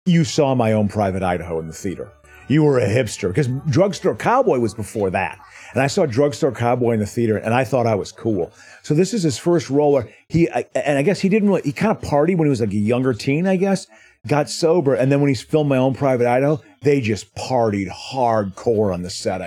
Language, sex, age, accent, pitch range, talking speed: English, male, 40-59, American, 110-145 Hz, 235 wpm